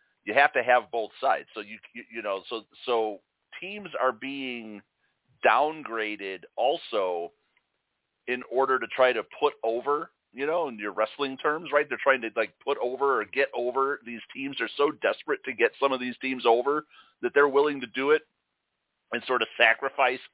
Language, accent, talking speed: English, American, 185 wpm